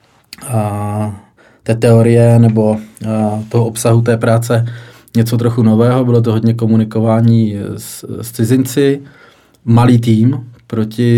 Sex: male